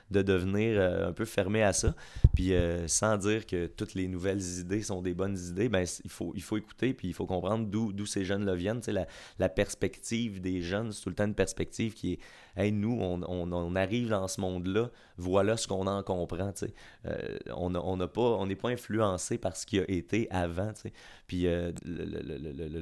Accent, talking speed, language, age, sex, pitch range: Canadian, 230 wpm, French, 30-49, male, 90-110 Hz